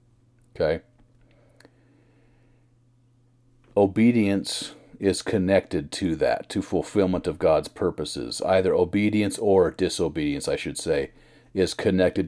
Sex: male